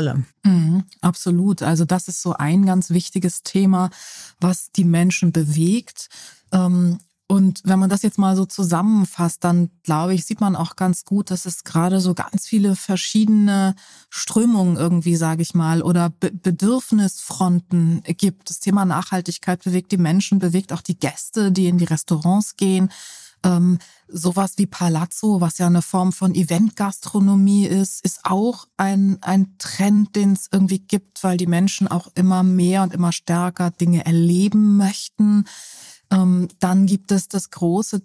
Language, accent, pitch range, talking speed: German, German, 175-195 Hz, 155 wpm